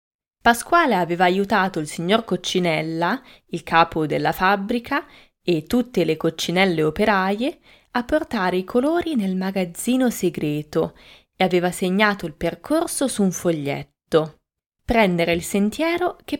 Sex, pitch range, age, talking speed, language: female, 170-235 Hz, 20-39, 125 wpm, Italian